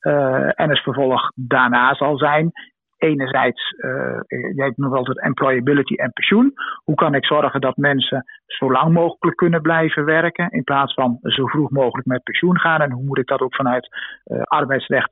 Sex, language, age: male, English, 50-69